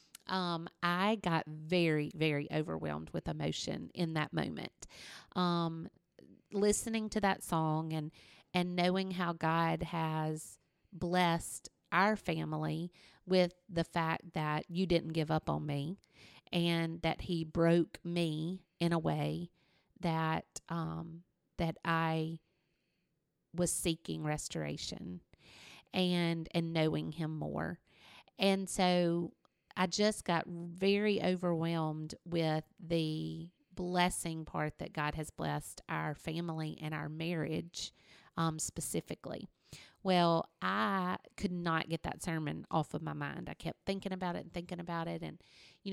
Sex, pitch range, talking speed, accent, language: female, 160-180 Hz, 130 wpm, American, English